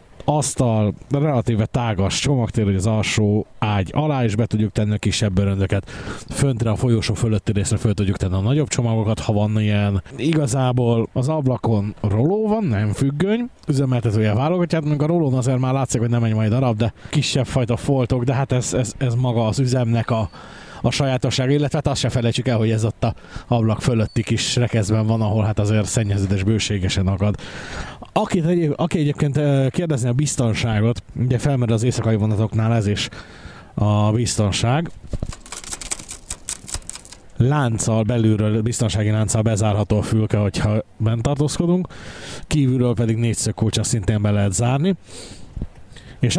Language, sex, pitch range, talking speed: Hungarian, male, 105-135 Hz, 150 wpm